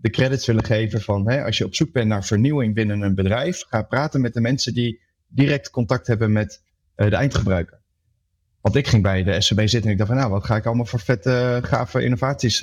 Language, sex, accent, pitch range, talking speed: Dutch, male, Dutch, 95-120 Hz, 235 wpm